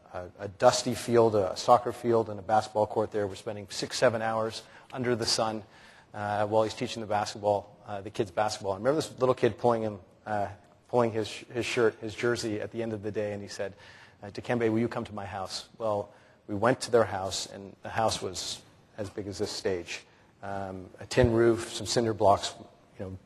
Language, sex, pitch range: English, male, 105-120 Hz